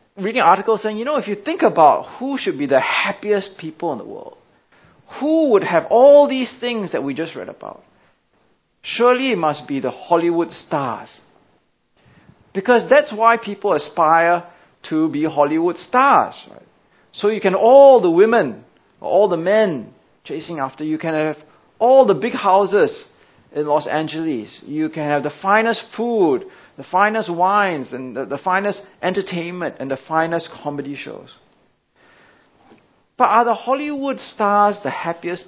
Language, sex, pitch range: English, male, 160-245 Hz